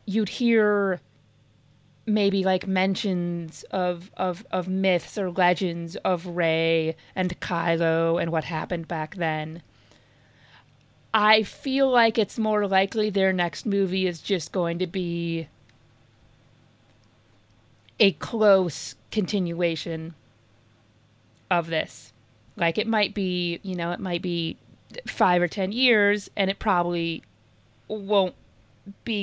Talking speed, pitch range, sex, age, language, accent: 115 wpm, 135-190 Hz, female, 30-49, English, American